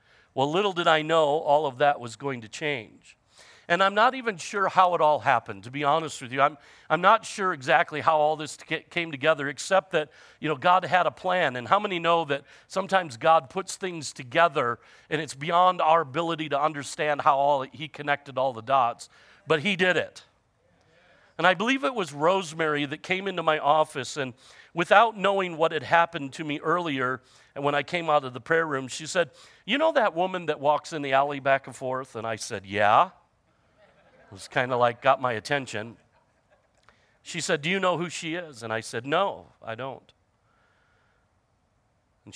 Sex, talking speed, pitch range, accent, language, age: male, 205 wpm, 125-170 Hz, American, English, 50-69